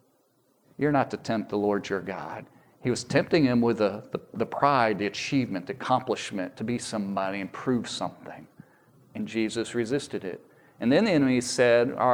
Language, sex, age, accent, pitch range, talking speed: English, male, 40-59, American, 115-145 Hz, 185 wpm